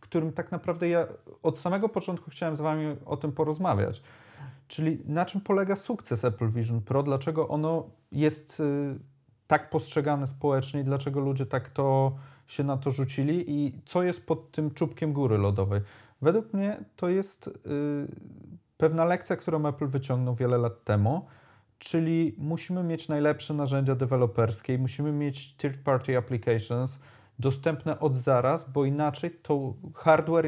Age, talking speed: 30-49, 150 wpm